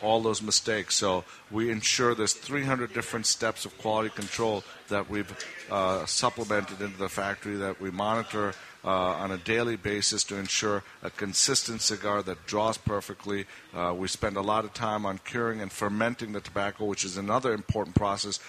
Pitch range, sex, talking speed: 100-115 Hz, male, 175 wpm